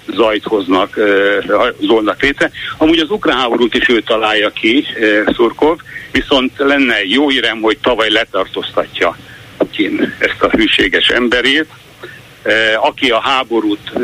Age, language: 60-79, Hungarian